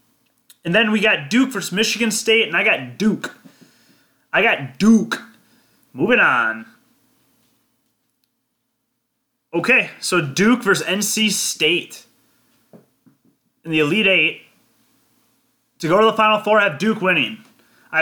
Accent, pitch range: American, 165-220 Hz